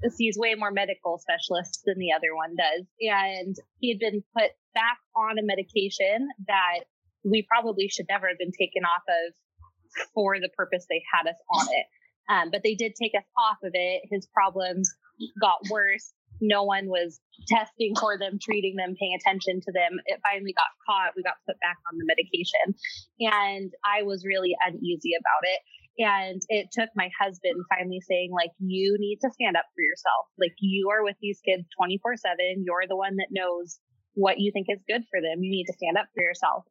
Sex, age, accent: female, 20-39, American